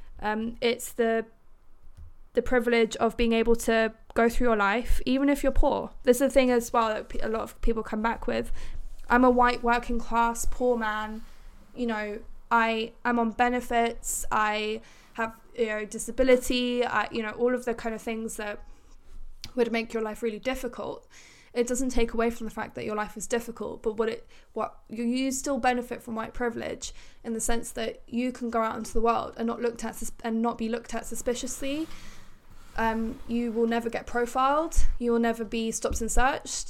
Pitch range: 225-245 Hz